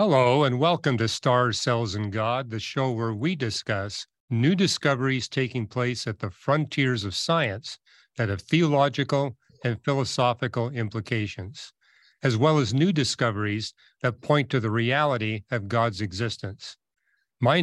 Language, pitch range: English, 115-145 Hz